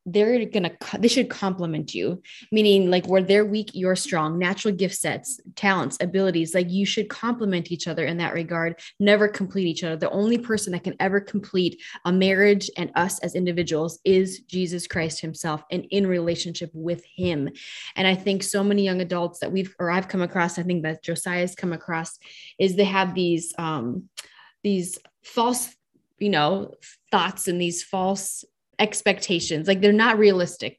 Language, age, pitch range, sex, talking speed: English, 20-39, 175-205 Hz, female, 175 wpm